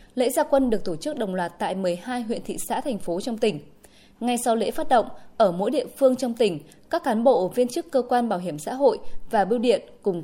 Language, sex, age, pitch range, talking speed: Vietnamese, female, 20-39, 185-260 Hz, 250 wpm